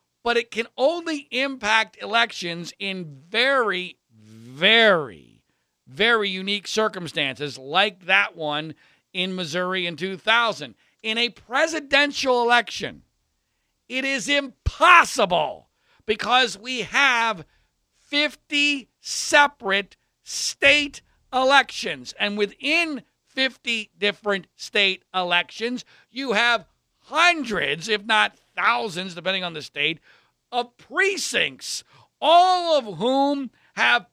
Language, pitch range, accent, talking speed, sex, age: English, 195-275 Hz, American, 95 wpm, male, 50-69